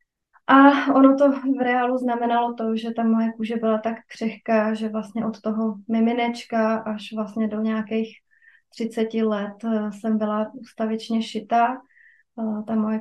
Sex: female